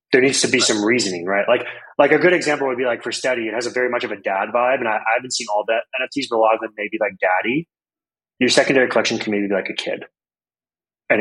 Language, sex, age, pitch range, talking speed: English, male, 30-49, 105-125 Hz, 285 wpm